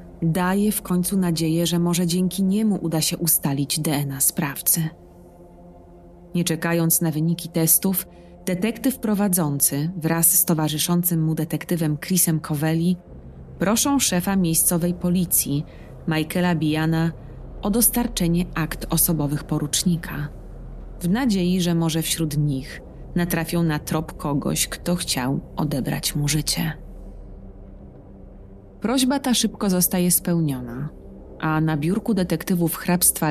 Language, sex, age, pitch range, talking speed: Polish, female, 30-49, 145-180 Hz, 115 wpm